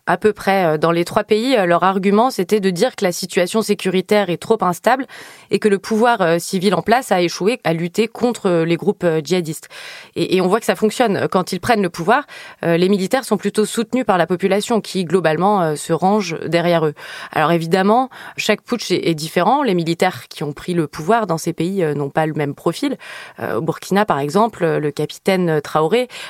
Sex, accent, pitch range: female, French, 165-210 Hz